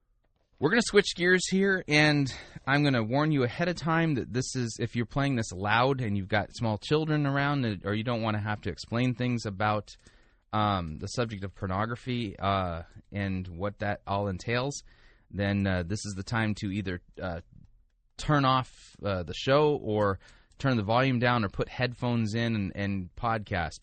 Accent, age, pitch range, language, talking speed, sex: American, 20-39, 95-120 Hz, English, 190 wpm, male